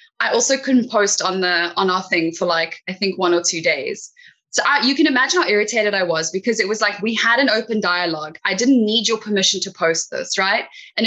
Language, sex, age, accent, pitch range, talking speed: English, female, 10-29, Australian, 180-225 Hz, 245 wpm